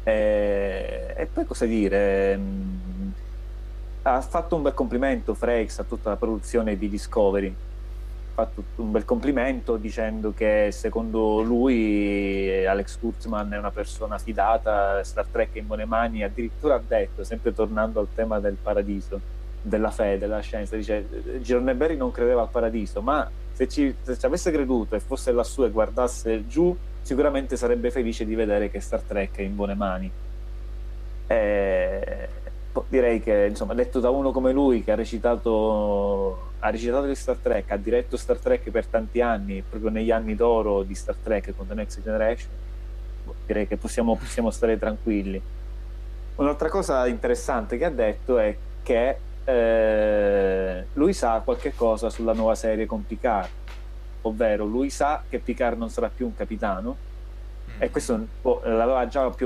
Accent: native